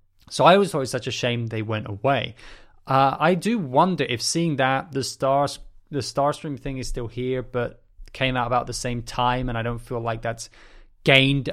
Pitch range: 115-140 Hz